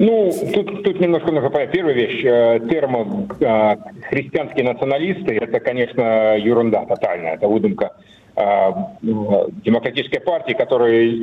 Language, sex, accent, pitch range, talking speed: Russian, male, native, 110-150 Hz, 100 wpm